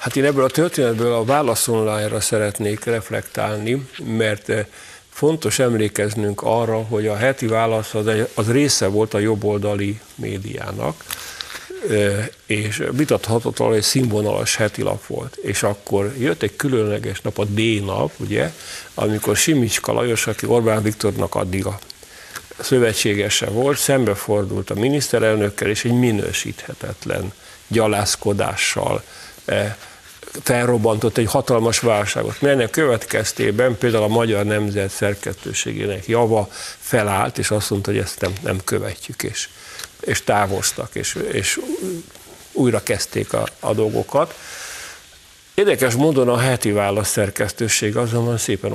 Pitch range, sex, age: 105-125 Hz, male, 50-69